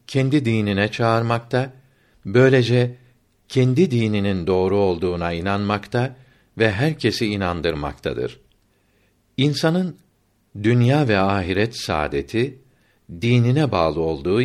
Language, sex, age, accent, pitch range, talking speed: Turkish, male, 60-79, native, 100-125 Hz, 85 wpm